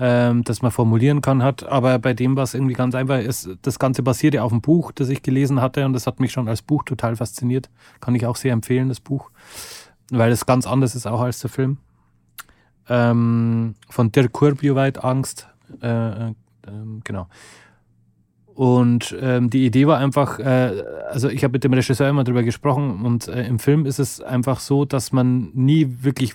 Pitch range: 115-130 Hz